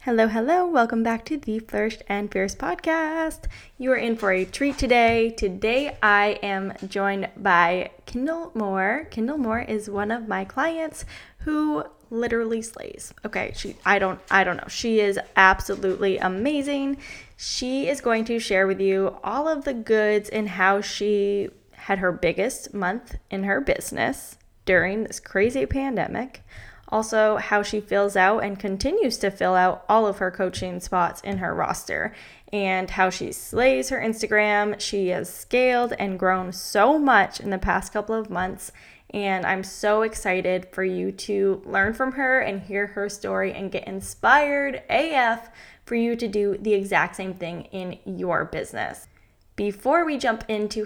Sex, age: female, 10-29